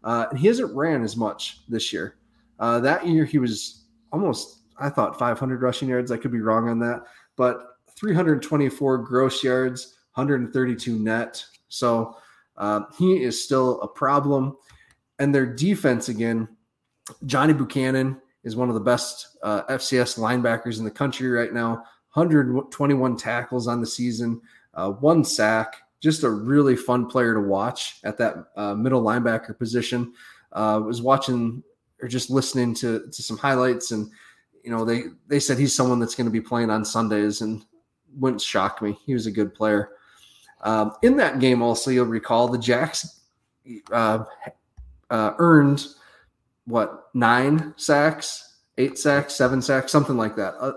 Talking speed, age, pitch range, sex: 160 wpm, 20-39, 115-140 Hz, male